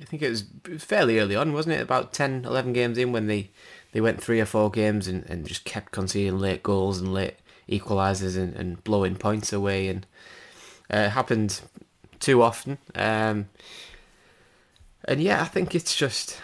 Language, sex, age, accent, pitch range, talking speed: English, male, 20-39, British, 95-115 Hz, 185 wpm